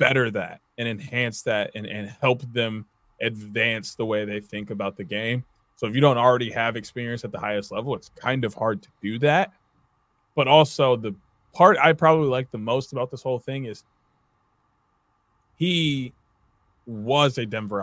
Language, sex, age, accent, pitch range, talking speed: English, male, 20-39, American, 105-130 Hz, 180 wpm